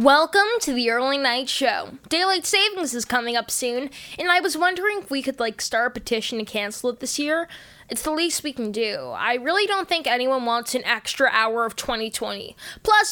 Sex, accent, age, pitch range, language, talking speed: female, American, 10-29, 250-365 Hz, English, 210 wpm